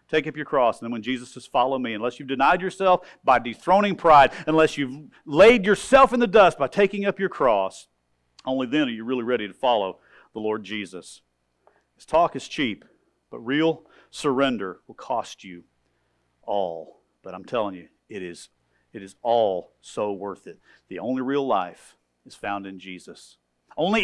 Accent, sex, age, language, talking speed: American, male, 50-69, English, 180 wpm